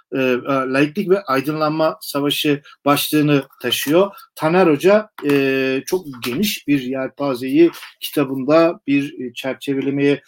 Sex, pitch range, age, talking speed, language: male, 140-175 Hz, 50-69, 100 wpm, Turkish